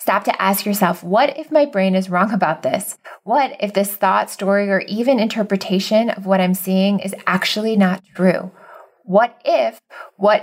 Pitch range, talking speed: 185-210 Hz, 180 wpm